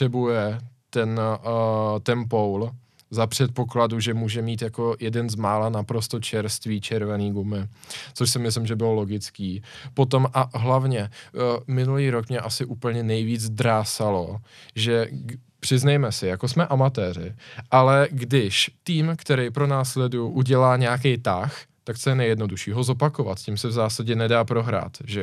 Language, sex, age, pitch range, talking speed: Czech, male, 20-39, 110-130 Hz, 155 wpm